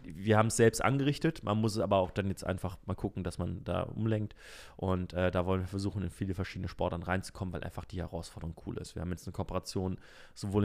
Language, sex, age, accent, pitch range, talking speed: German, male, 30-49, German, 85-105 Hz, 235 wpm